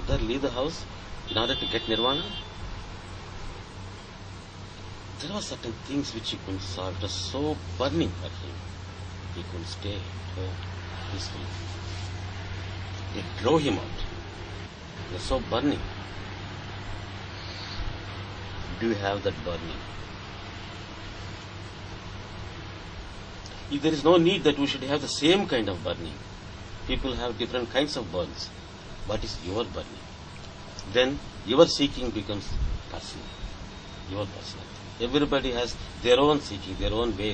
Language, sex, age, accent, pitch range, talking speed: English, male, 60-79, Indian, 90-105 Hz, 125 wpm